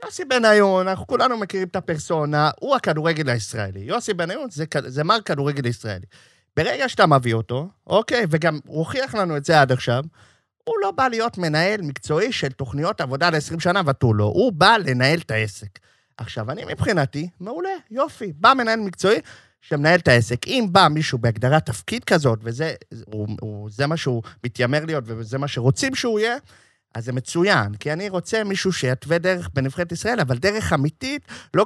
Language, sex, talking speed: Hebrew, male, 140 wpm